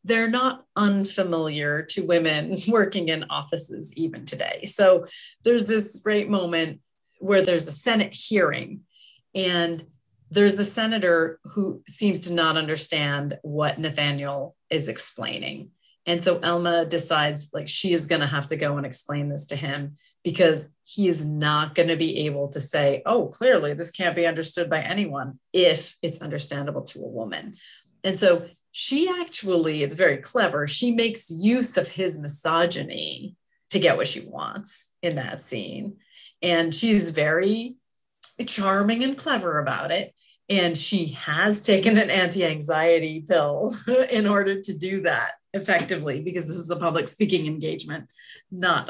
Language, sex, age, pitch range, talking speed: English, female, 30-49, 155-205 Hz, 150 wpm